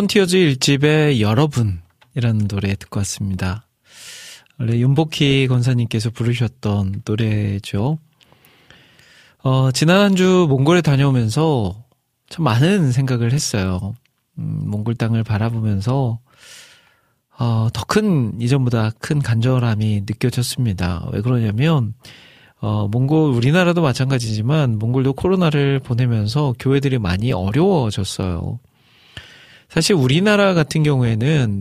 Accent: native